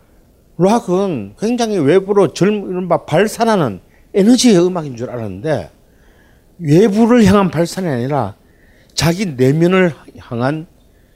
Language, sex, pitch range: Korean, male, 110-175 Hz